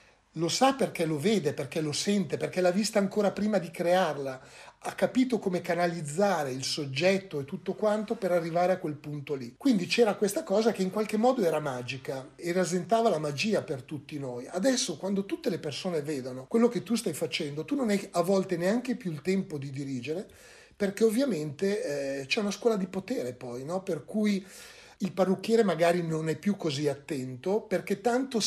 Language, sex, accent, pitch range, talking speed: Italian, male, native, 155-205 Hz, 190 wpm